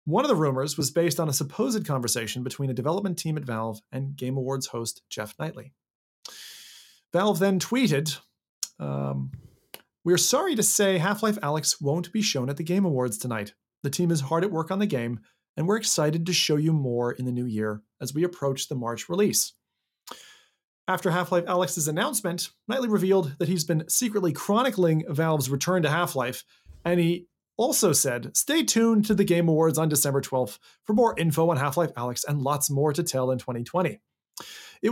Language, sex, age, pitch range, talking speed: English, male, 30-49, 140-195 Hz, 190 wpm